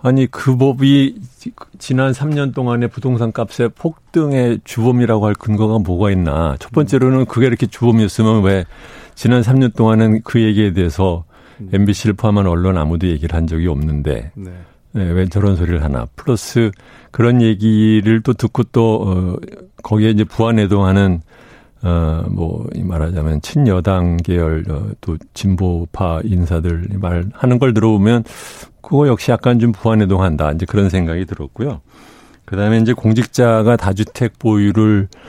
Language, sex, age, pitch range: Korean, male, 50-69, 90-120 Hz